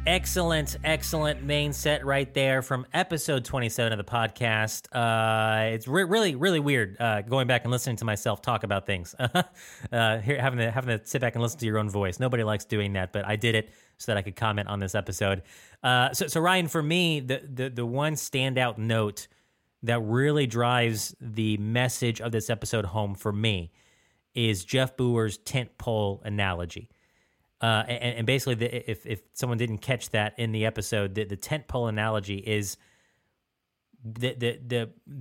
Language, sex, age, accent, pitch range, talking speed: English, male, 30-49, American, 105-130 Hz, 180 wpm